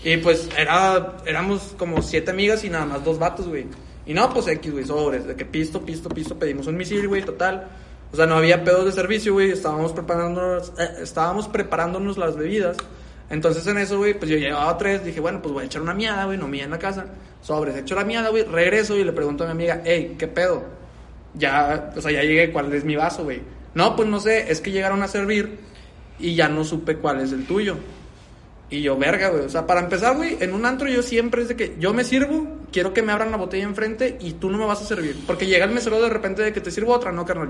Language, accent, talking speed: Spanish, Mexican, 245 wpm